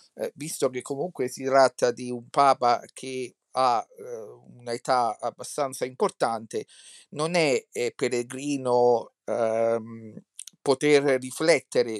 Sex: male